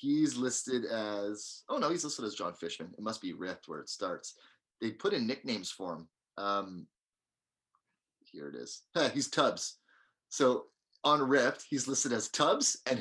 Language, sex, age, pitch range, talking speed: English, male, 30-49, 100-135 Hz, 170 wpm